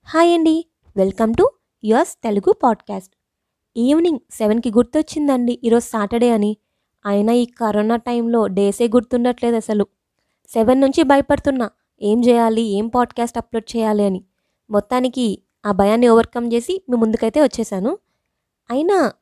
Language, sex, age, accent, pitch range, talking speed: Telugu, female, 20-39, native, 215-290 Hz, 120 wpm